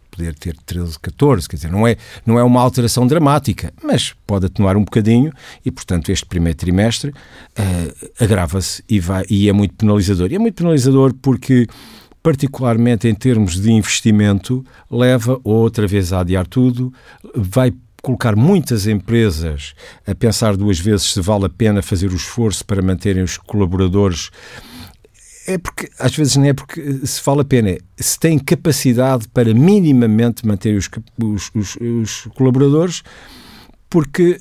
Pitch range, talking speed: 95-125 Hz, 150 wpm